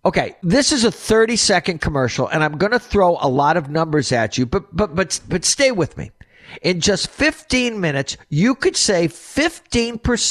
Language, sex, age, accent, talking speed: English, male, 50-69, American, 180 wpm